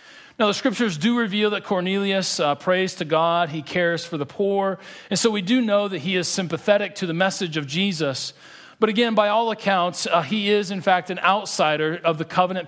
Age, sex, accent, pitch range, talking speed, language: 40-59, male, American, 165-210 Hz, 215 wpm, English